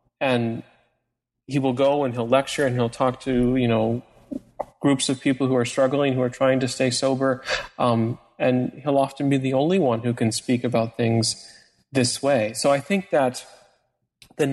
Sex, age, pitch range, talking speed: male, 30-49, 120-140 Hz, 185 wpm